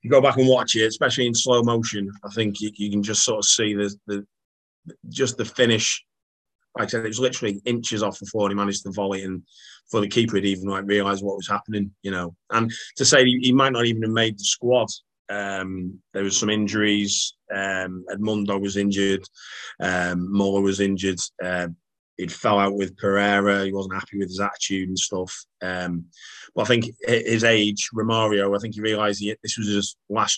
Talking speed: 210 wpm